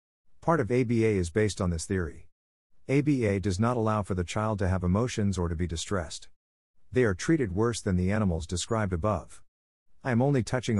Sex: male